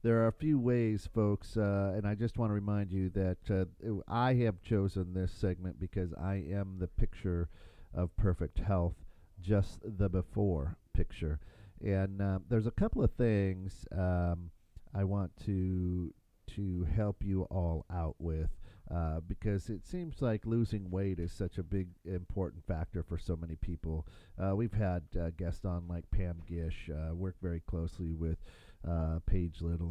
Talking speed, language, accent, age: 170 wpm, English, American, 40-59